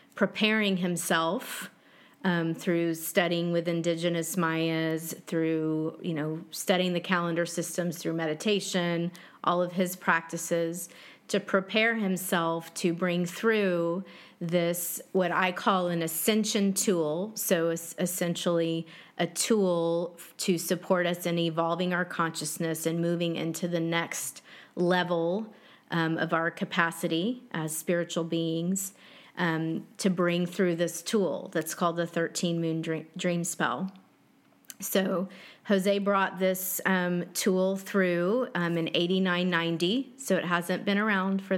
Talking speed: 130 wpm